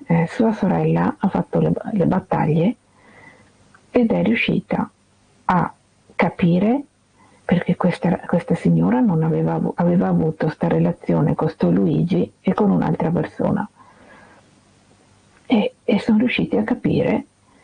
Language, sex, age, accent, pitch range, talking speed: Italian, female, 50-69, native, 165-230 Hz, 125 wpm